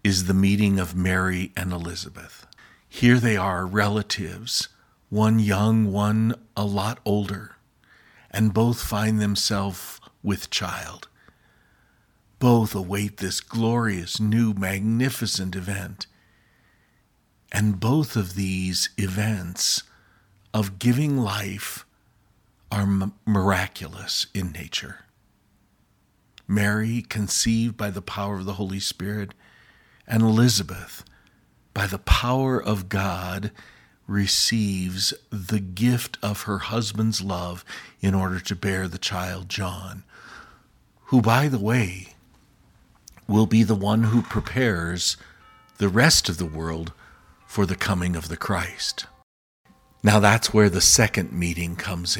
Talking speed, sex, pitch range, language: 115 wpm, male, 95-110 Hz, English